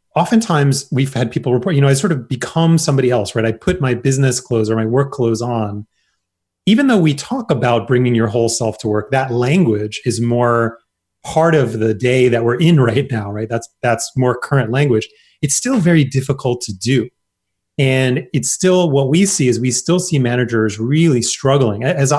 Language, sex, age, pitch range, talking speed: English, male, 30-49, 115-150 Hz, 200 wpm